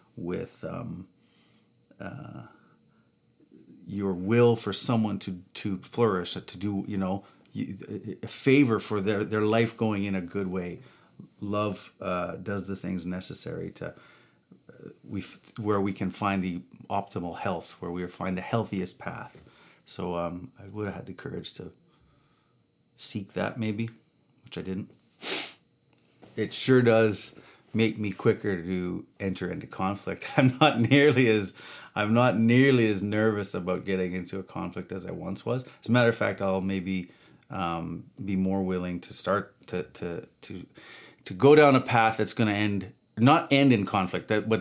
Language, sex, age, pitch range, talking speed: English, male, 40-59, 95-110 Hz, 160 wpm